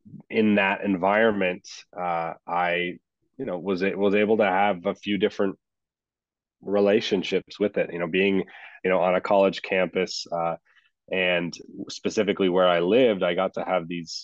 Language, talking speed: English, 165 wpm